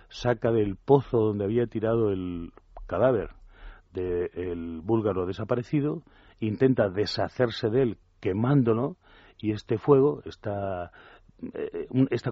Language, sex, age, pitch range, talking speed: Spanish, male, 40-59, 100-125 Hz, 100 wpm